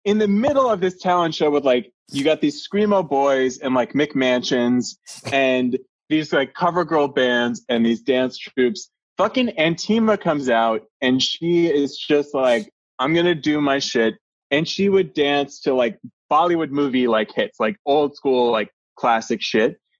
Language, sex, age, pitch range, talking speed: English, male, 20-39, 120-160 Hz, 175 wpm